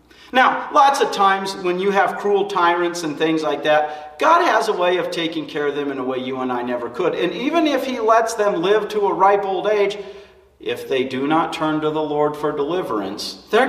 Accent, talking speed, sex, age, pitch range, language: American, 230 wpm, male, 40-59, 130-210 Hz, English